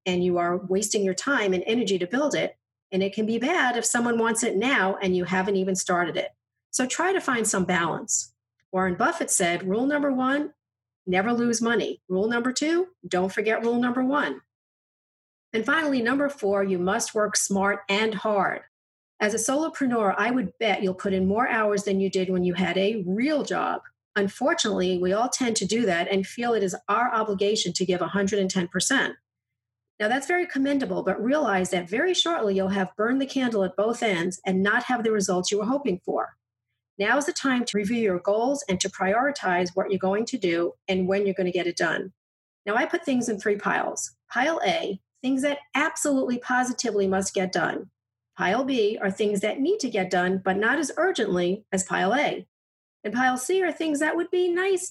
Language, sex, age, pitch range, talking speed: English, female, 40-59, 190-255 Hz, 205 wpm